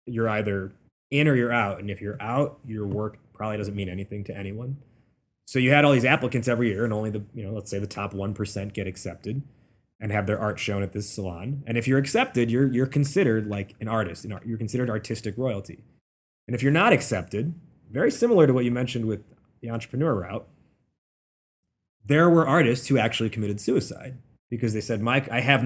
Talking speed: 205 wpm